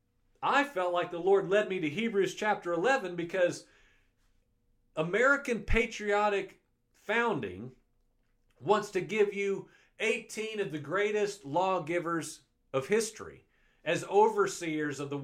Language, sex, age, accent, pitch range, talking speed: English, male, 50-69, American, 145-215 Hz, 120 wpm